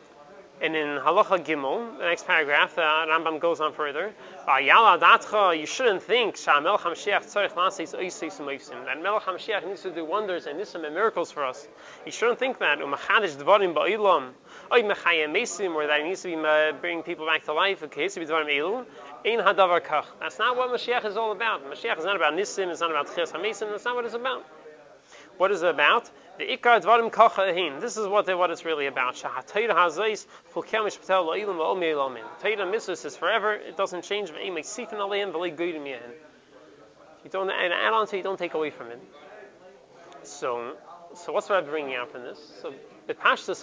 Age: 30-49